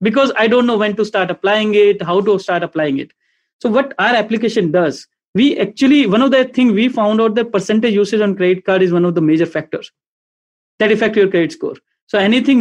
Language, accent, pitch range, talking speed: English, Indian, 190-235 Hz, 225 wpm